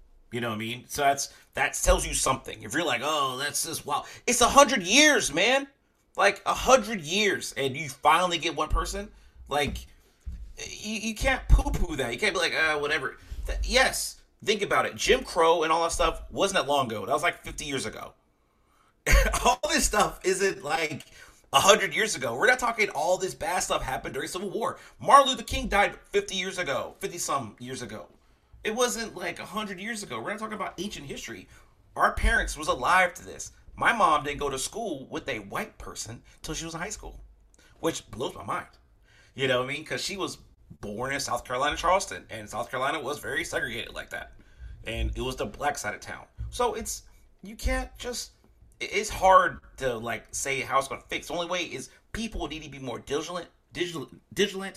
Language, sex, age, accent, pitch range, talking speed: English, male, 30-49, American, 140-225 Hz, 205 wpm